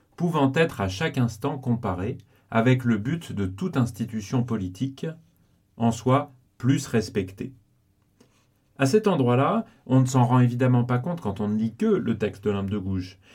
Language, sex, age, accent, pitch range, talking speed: French, male, 40-59, French, 105-140 Hz, 175 wpm